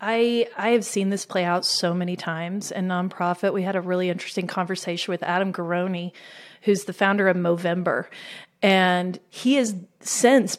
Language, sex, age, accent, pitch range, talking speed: English, female, 30-49, American, 180-215 Hz, 170 wpm